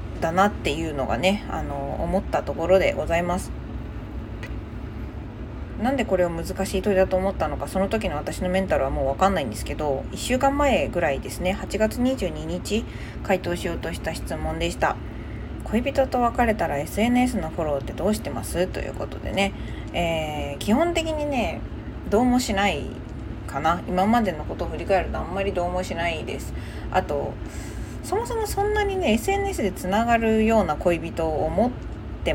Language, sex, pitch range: Japanese, female, 185-265 Hz